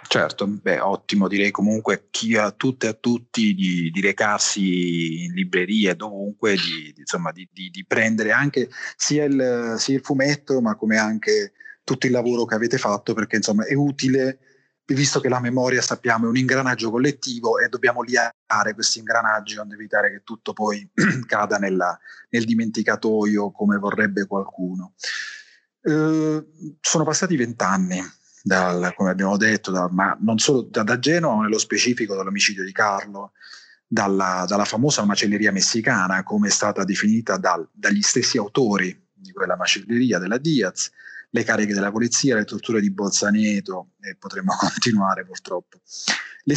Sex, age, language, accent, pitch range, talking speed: male, 30-49, Italian, native, 100-135 Hz, 155 wpm